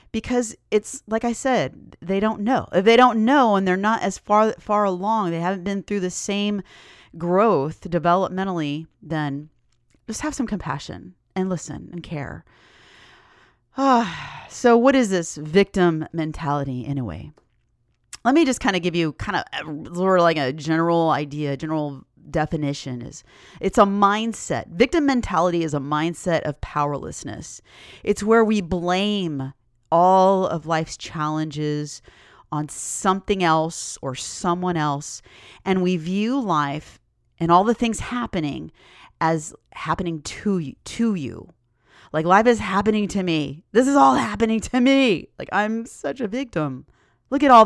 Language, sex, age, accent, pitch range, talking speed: English, female, 30-49, American, 150-210 Hz, 155 wpm